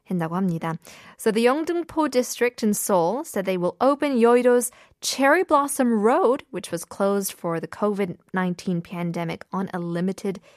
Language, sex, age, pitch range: Korean, female, 20-39, 180-255 Hz